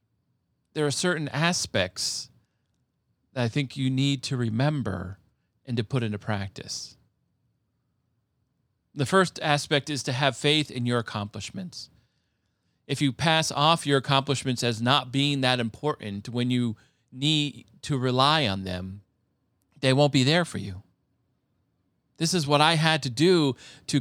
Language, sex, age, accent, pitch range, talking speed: English, male, 40-59, American, 125-155 Hz, 145 wpm